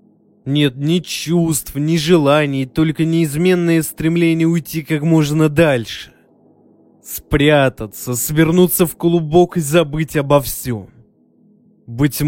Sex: male